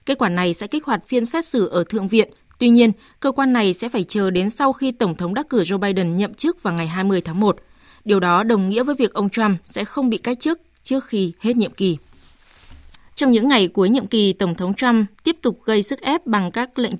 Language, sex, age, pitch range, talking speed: Vietnamese, female, 20-39, 190-250 Hz, 250 wpm